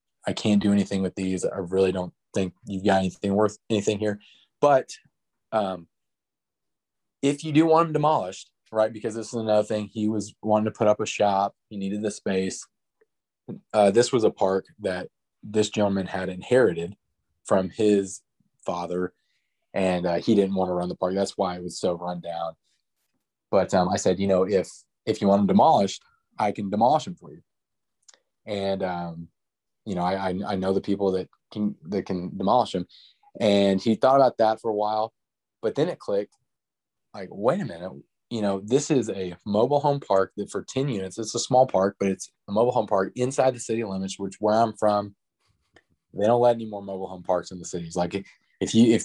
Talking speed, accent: 200 wpm, American